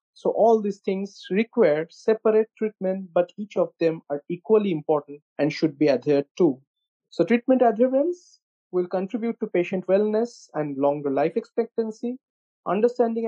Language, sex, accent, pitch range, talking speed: English, male, Indian, 150-195 Hz, 145 wpm